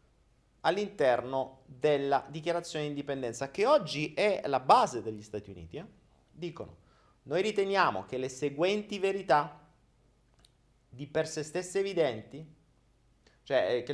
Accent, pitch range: native, 130-185 Hz